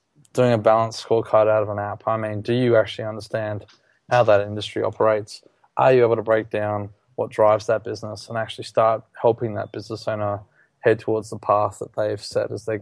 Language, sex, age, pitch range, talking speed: English, male, 20-39, 105-120 Hz, 205 wpm